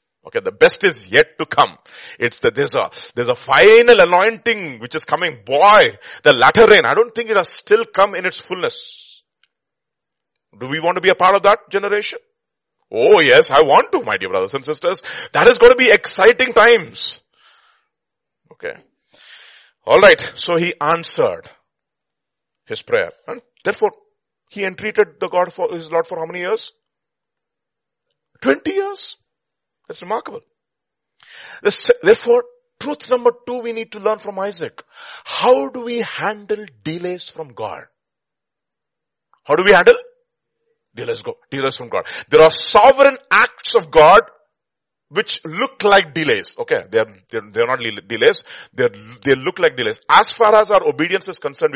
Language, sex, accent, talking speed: English, male, Indian, 160 wpm